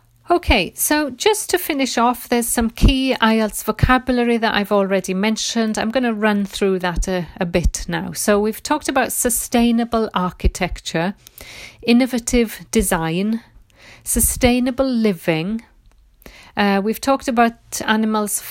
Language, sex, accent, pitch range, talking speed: English, female, British, 185-230 Hz, 130 wpm